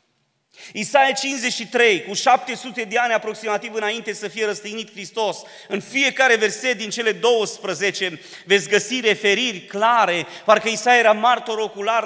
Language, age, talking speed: Romanian, 30-49, 135 wpm